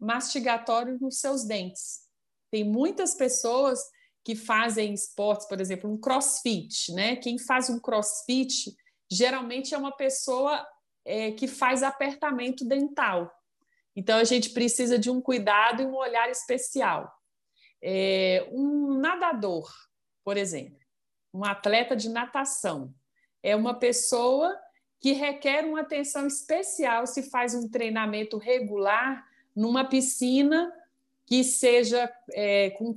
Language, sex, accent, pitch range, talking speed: Portuguese, female, Brazilian, 210-270 Hz, 115 wpm